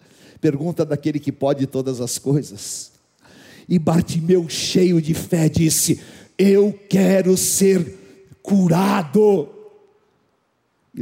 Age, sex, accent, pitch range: 50-69, male, Brazilian, 125-185 Hz